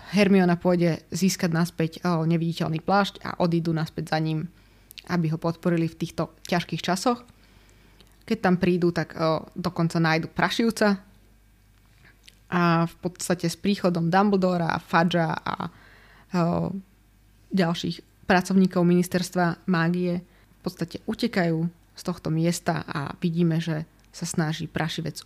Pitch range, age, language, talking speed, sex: 155-180 Hz, 20-39, Slovak, 125 wpm, female